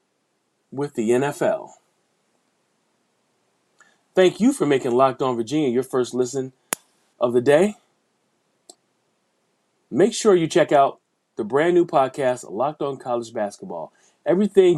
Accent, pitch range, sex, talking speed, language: American, 120-165 Hz, male, 120 wpm, English